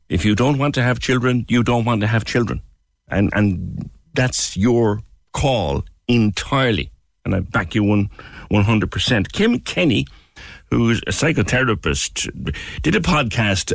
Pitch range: 90-120 Hz